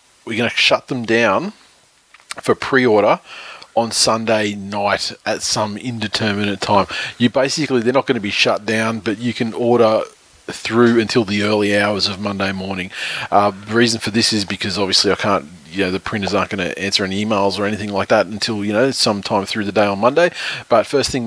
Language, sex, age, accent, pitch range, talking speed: English, male, 30-49, Australian, 100-115 Hz, 210 wpm